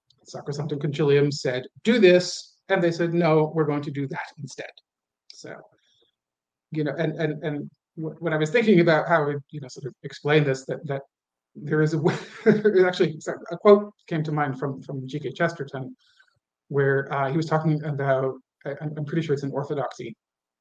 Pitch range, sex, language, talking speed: 140-170 Hz, male, English, 190 wpm